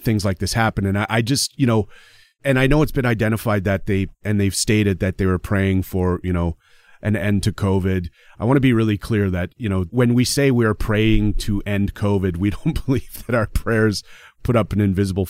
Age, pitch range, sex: 40-59, 95-115 Hz, male